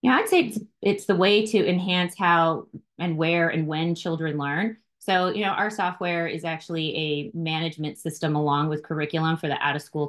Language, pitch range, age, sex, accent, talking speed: English, 150-175 Hz, 30-49, female, American, 190 wpm